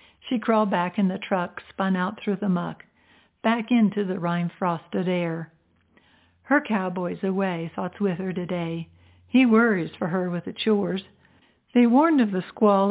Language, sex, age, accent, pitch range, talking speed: English, female, 60-79, American, 180-220 Hz, 165 wpm